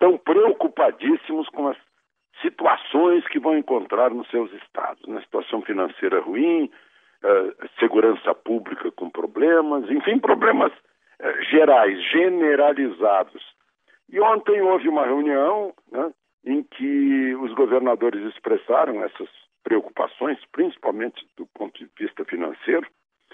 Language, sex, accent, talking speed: Portuguese, male, Brazilian, 110 wpm